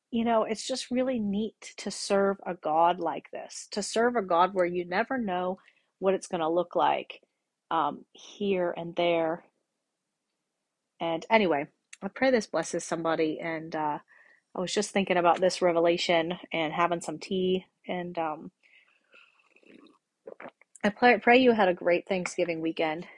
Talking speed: 160 wpm